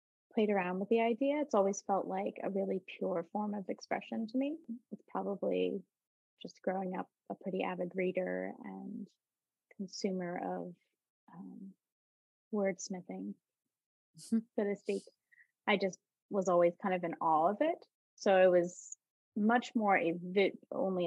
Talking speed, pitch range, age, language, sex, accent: 150 wpm, 180-225 Hz, 20-39, English, female, American